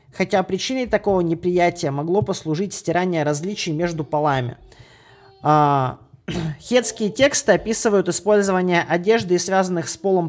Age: 20-39